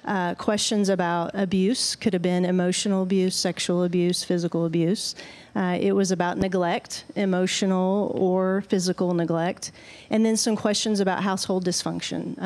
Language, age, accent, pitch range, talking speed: English, 40-59, American, 180-205 Hz, 140 wpm